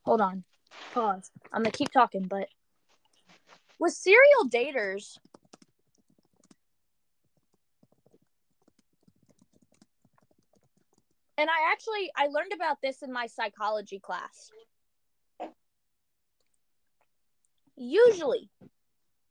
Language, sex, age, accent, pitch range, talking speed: English, female, 20-39, American, 220-295 Hz, 75 wpm